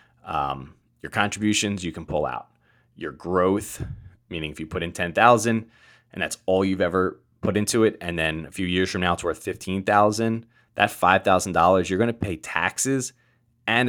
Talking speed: 175 wpm